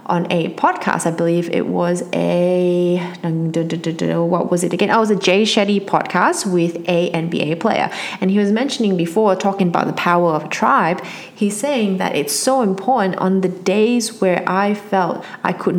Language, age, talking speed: English, 30-49, 180 wpm